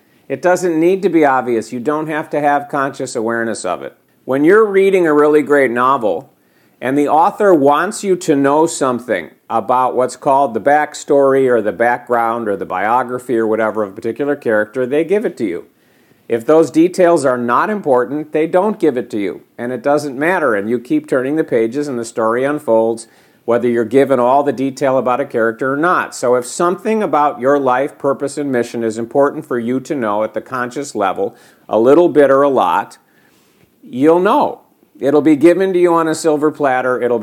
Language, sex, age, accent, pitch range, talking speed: English, male, 50-69, American, 120-150 Hz, 205 wpm